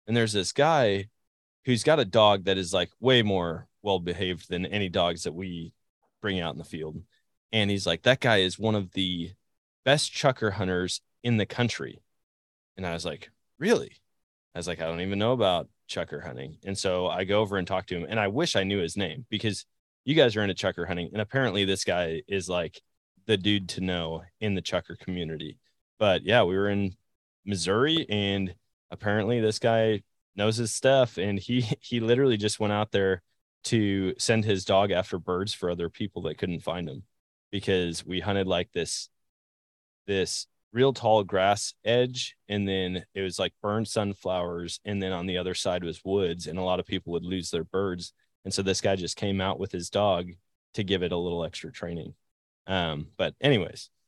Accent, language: American, English